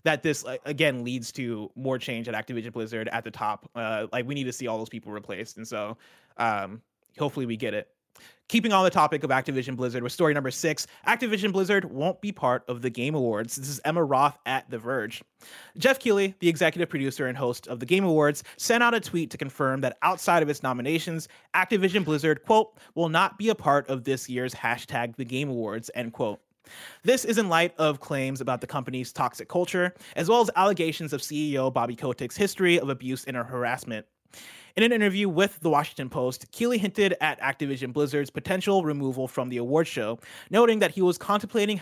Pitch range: 130-180 Hz